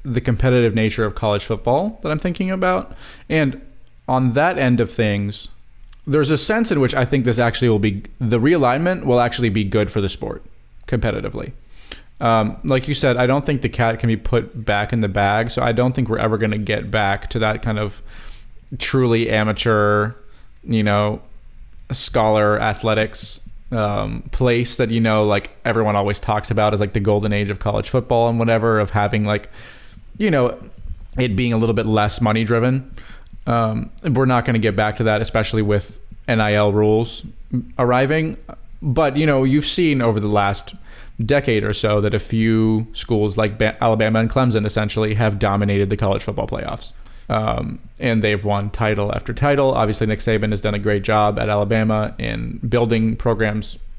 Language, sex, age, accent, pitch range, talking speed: English, male, 20-39, American, 105-120 Hz, 180 wpm